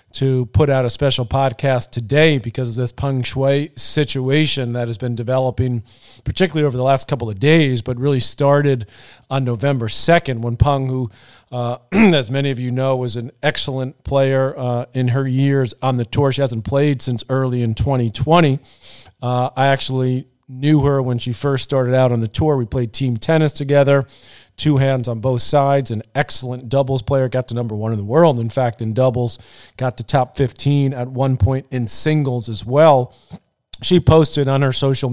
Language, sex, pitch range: English, male, 120-140 Hz